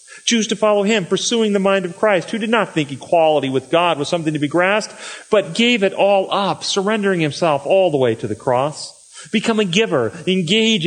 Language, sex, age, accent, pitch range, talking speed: English, male, 40-59, American, 150-205 Hz, 210 wpm